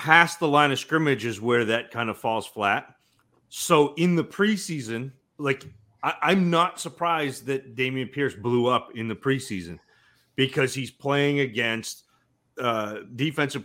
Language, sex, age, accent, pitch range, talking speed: English, male, 30-49, American, 120-150 Hz, 155 wpm